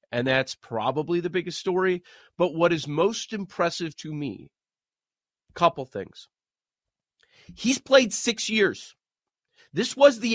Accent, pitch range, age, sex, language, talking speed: American, 140-190 Hz, 40-59, male, English, 130 wpm